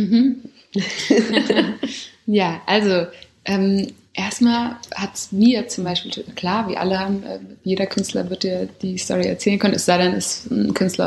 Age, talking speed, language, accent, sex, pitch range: 20-39, 155 wpm, German, German, female, 175-205 Hz